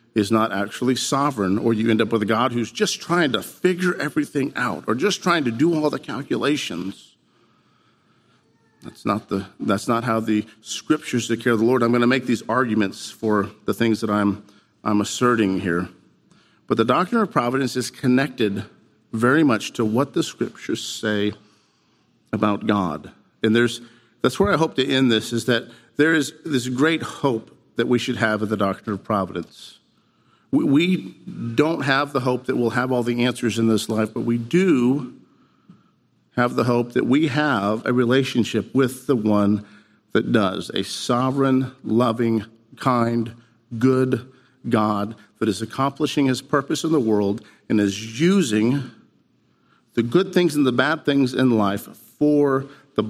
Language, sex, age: English, male, 50-69